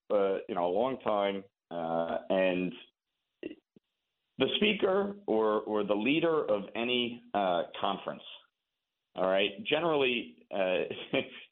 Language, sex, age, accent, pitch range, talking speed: English, male, 50-69, American, 105-135 Hz, 115 wpm